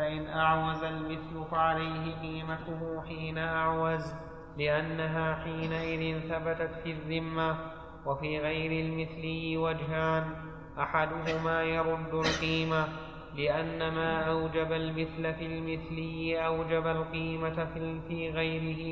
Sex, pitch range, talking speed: male, 160-165 Hz, 90 wpm